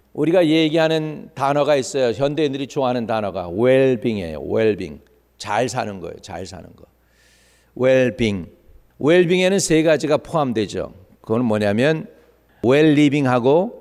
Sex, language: male, English